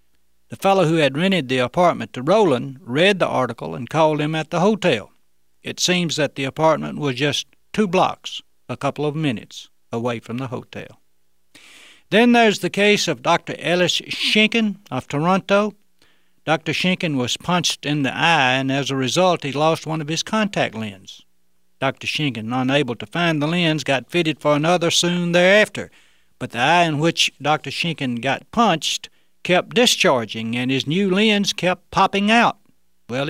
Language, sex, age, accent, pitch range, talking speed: English, male, 60-79, American, 125-170 Hz, 170 wpm